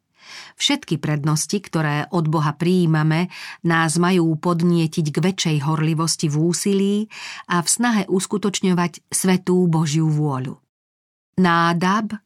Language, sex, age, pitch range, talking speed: Slovak, female, 40-59, 160-190 Hz, 110 wpm